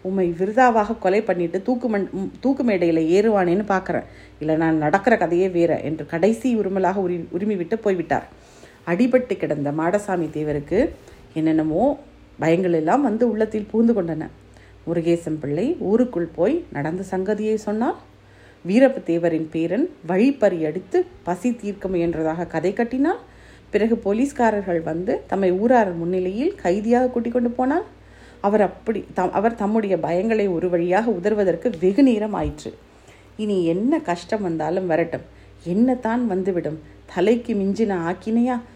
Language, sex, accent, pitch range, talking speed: Tamil, female, native, 165-225 Hz, 125 wpm